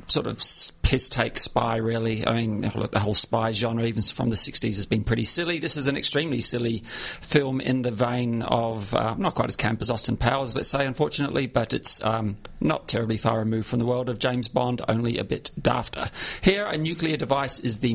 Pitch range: 115-135 Hz